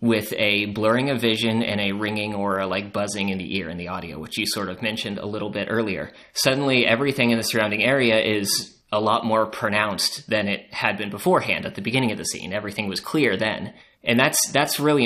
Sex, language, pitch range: male, English, 100-115 Hz